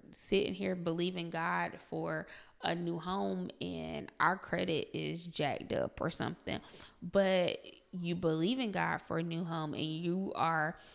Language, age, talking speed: English, 20-39, 155 wpm